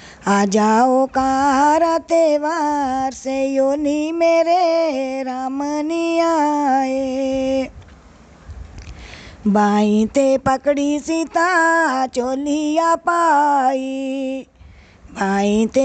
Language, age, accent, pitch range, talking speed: Hindi, 20-39, native, 265-315 Hz, 55 wpm